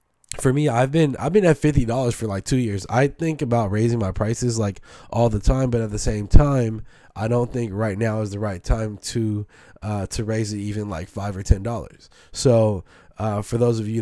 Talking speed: 225 wpm